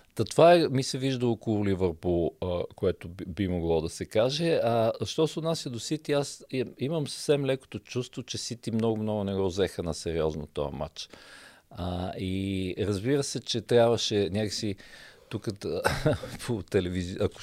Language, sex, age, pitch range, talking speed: Bulgarian, male, 50-69, 95-115 Hz, 150 wpm